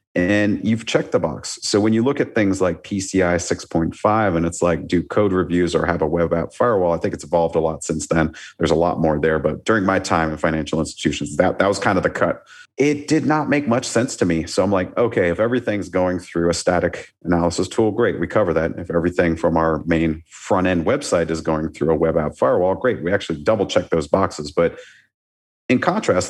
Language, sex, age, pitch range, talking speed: English, male, 40-59, 80-100 Hz, 230 wpm